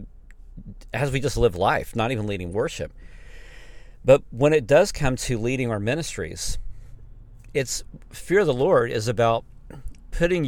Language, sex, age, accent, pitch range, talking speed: English, male, 50-69, American, 90-125 Hz, 150 wpm